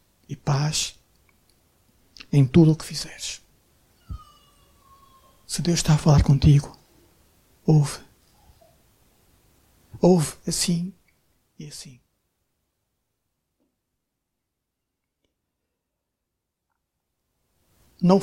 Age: 60-79